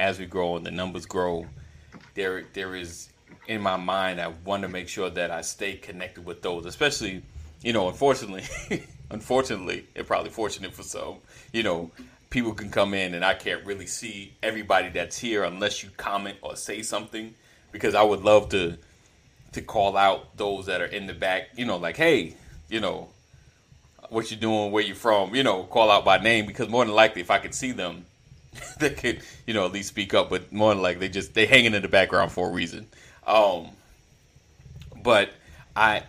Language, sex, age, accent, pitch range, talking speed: English, male, 30-49, American, 85-105 Hz, 200 wpm